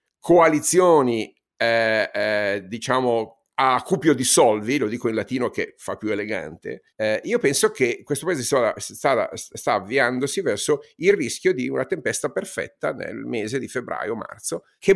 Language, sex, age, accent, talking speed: Italian, male, 50-69, native, 150 wpm